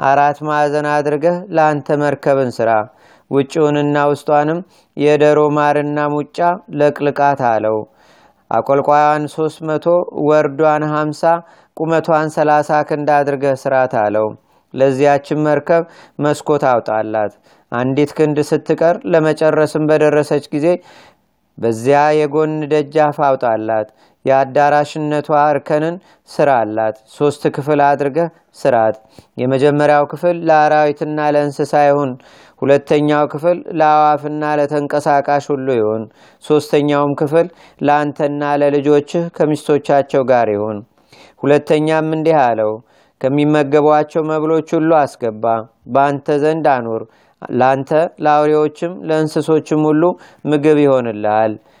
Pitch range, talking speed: 140-155 Hz, 90 wpm